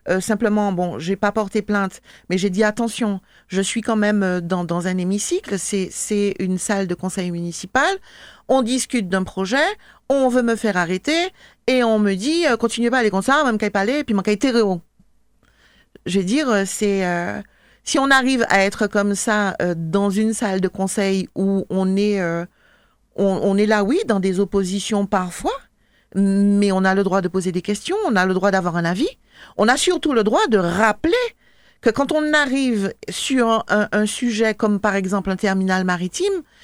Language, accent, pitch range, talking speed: French, French, 195-245 Hz, 200 wpm